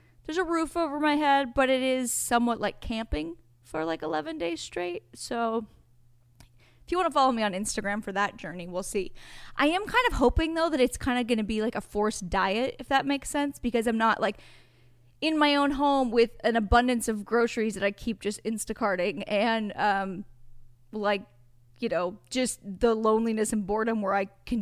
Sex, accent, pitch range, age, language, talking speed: female, American, 200-255 Hz, 10-29, English, 200 wpm